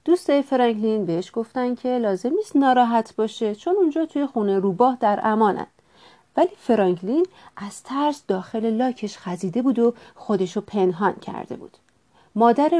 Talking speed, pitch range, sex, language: 140 wpm, 205-280 Hz, female, Persian